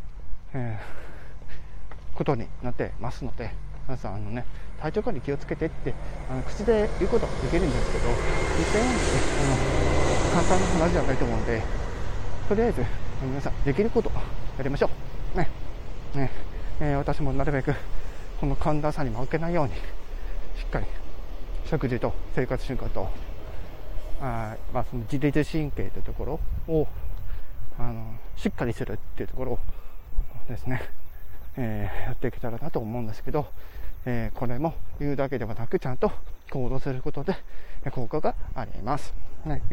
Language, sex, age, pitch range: Japanese, male, 20-39, 90-135 Hz